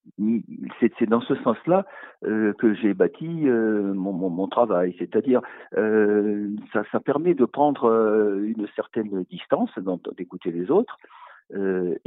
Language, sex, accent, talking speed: French, male, French, 125 wpm